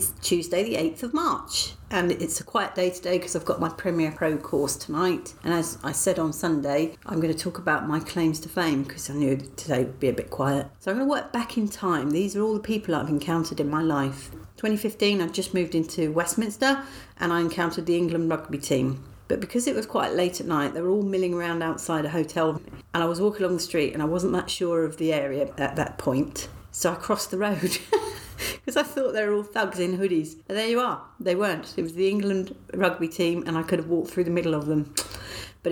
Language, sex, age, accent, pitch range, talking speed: English, female, 40-59, British, 160-200 Hz, 245 wpm